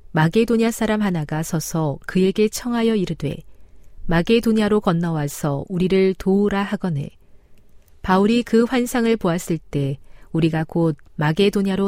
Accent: native